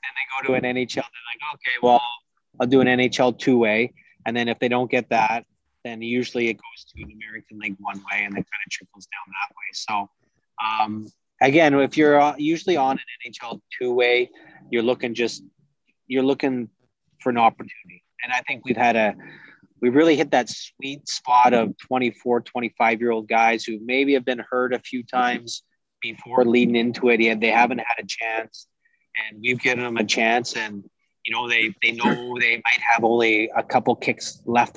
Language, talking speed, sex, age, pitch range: English, 200 wpm, male, 30-49, 110-125 Hz